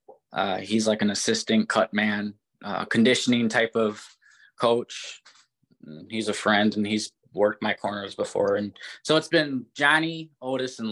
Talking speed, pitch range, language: 155 wpm, 105-130 Hz, English